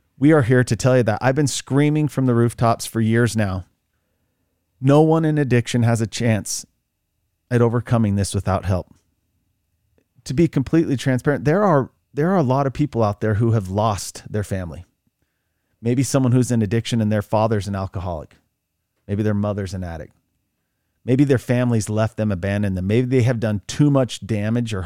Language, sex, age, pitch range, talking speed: English, male, 40-59, 100-140 Hz, 185 wpm